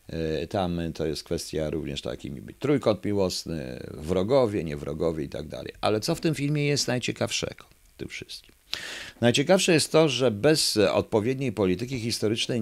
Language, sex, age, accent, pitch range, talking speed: Polish, male, 50-69, native, 80-115 Hz, 145 wpm